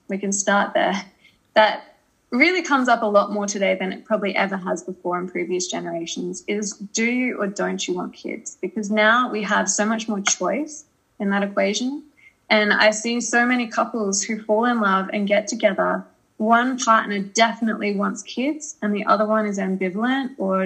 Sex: female